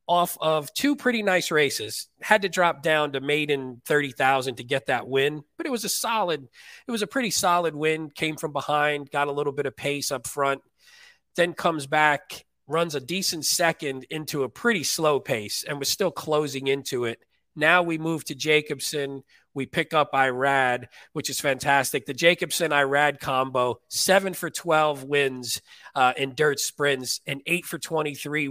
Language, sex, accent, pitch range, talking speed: English, male, American, 135-170 Hz, 180 wpm